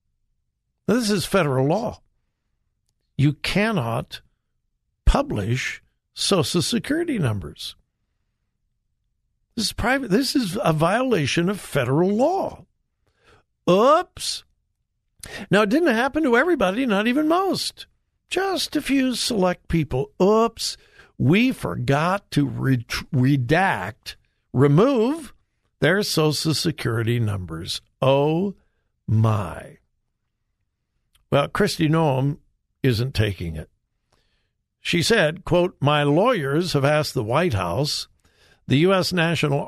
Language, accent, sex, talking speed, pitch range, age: English, American, male, 100 wpm, 130-205 Hz, 60-79